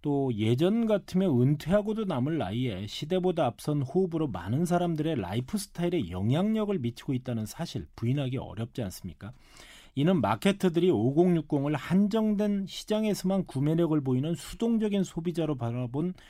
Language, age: Korean, 40-59